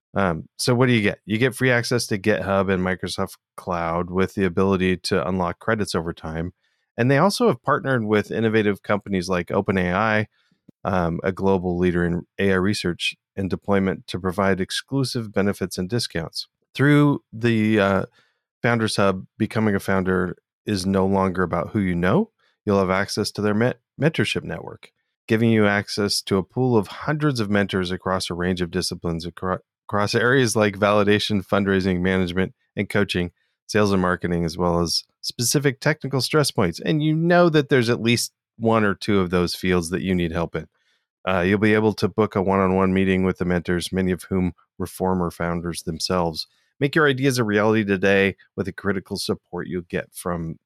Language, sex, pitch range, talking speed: English, male, 90-115 Hz, 185 wpm